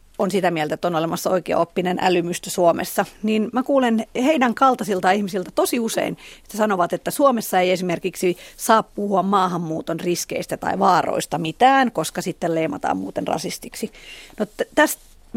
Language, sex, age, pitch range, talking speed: Finnish, female, 40-59, 180-245 Hz, 150 wpm